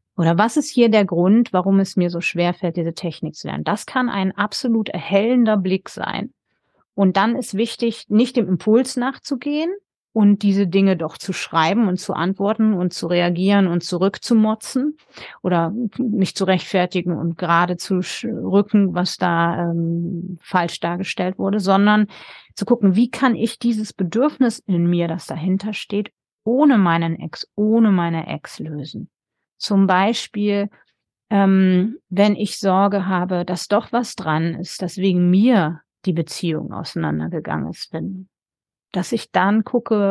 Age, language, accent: 30-49, German, German